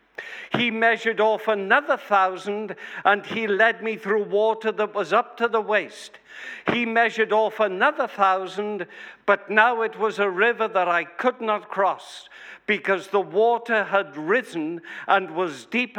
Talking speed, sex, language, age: 155 wpm, male, English, 60-79